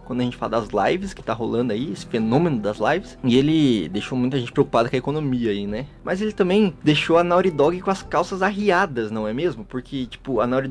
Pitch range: 125-180 Hz